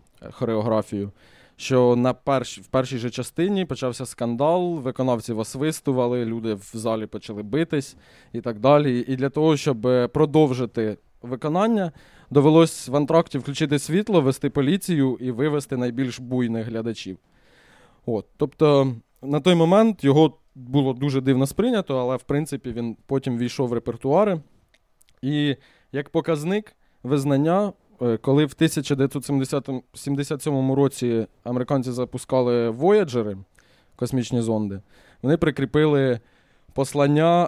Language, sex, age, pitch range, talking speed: Ukrainian, male, 20-39, 120-150 Hz, 115 wpm